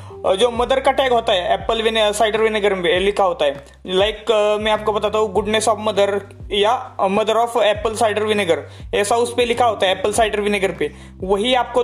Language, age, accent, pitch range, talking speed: Hindi, 20-39, native, 200-230 Hz, 205 wpm